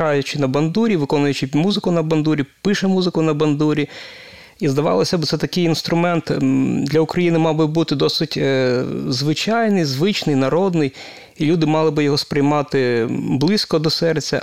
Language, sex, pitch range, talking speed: Ukrainian, male, 145-170 Hz, 145 wpm